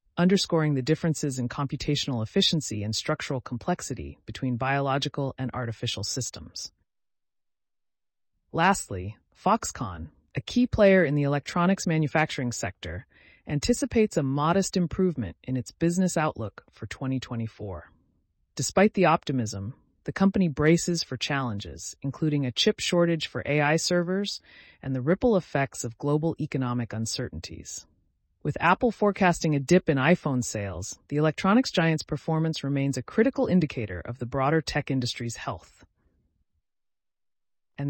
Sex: female